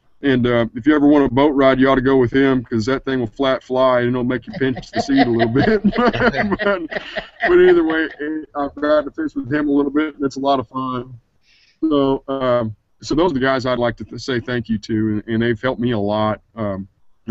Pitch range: 115-140 Hz